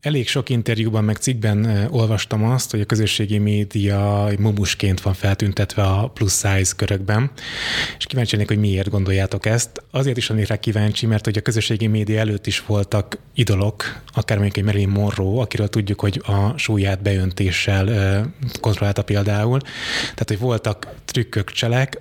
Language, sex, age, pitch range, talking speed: Hungarian, male, 20-39, 100-115 Hz, 160 wpm